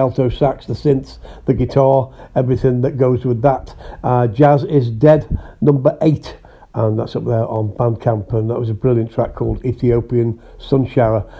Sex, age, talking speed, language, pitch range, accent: male, 50-69, 175 wpm, English, 115-140 Hz, British